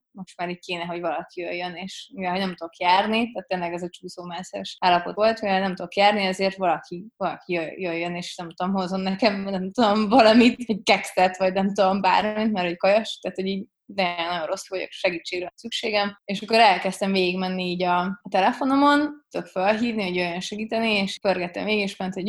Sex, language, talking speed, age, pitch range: female, Hungarian, 190 wpm, 20-39, 180-205 Hz